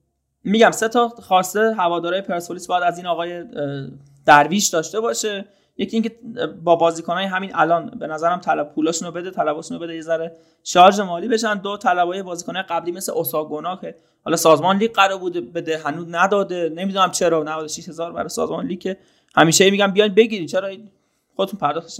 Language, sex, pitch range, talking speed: Persian, male, 165-200 Hz, 170 wpm